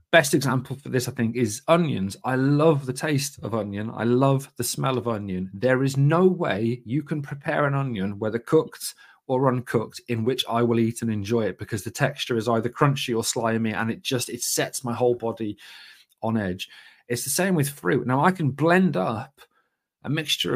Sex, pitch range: male, 115-145 Hz